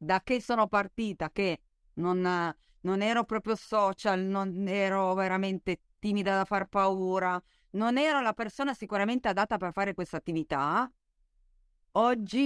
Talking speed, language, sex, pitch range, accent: 135 wpm, Italian, female, 180-230 Hz, native